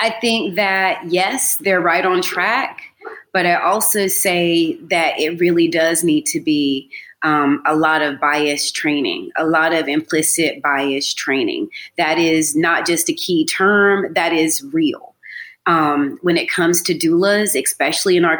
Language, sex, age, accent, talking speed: English, female, 30-49, American, 165 wpm